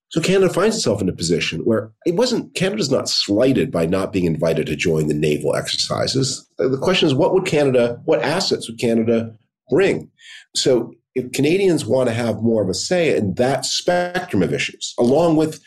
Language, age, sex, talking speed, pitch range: English, 40-59, male, 190 wpm, 100-135 Hz